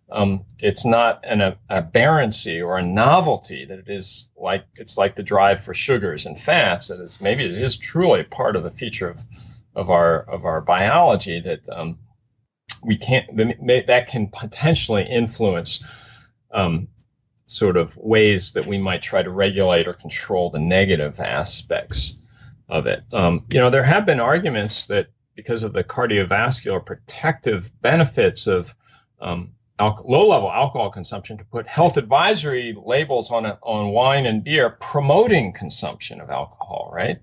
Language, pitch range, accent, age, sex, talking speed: English, 100-125 Hz, American, 40-59, male, 155 wpm